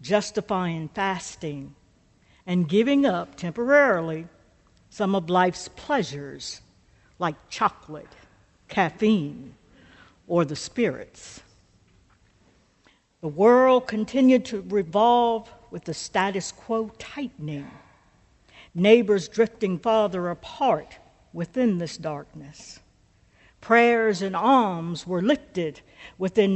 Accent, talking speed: American, 90 wpm